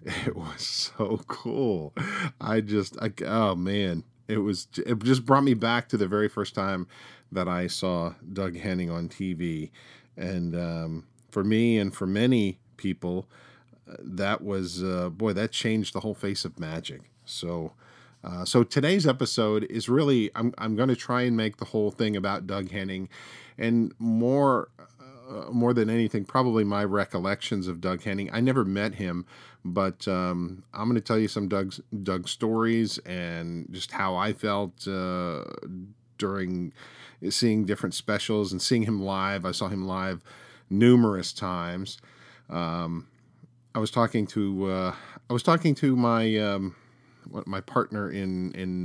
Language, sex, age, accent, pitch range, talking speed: English, male, 40-59, American, 90-115 Hz, 160 wpm